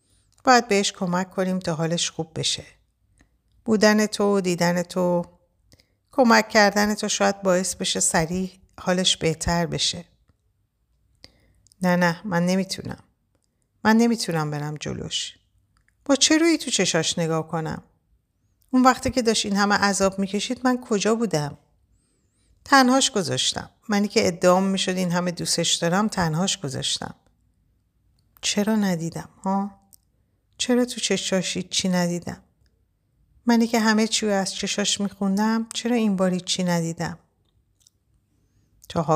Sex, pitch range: female, 125-205 Hz